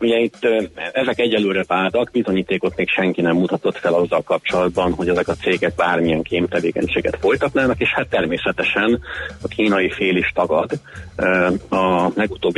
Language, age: Hungarian, 40-59